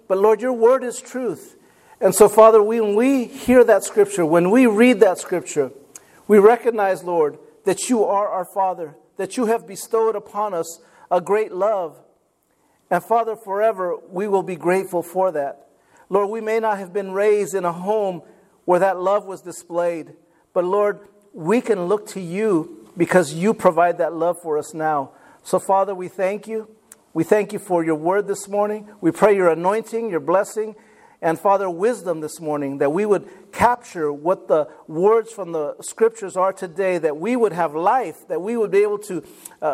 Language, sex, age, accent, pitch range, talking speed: English, male, 50-69, American, 170-220 Hz, 185 wpm